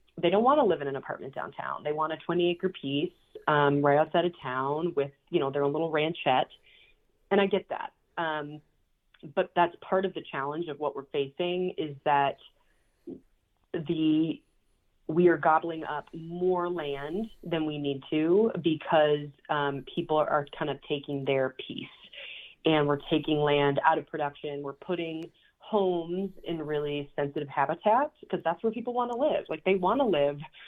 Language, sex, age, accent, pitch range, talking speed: English, female, 30-49, American, 145-175 Hz, 170 wpm